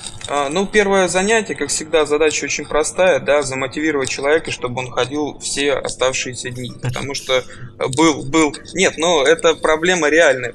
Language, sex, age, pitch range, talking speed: Russian, male, 20-39, 130-155 Hz, 150 wpm